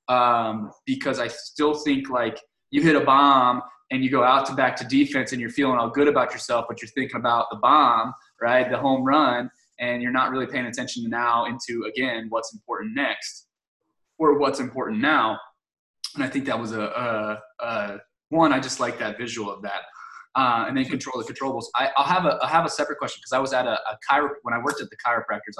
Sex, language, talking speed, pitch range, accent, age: male, English, 225 wpm, 115-140 Hz, American, 20-39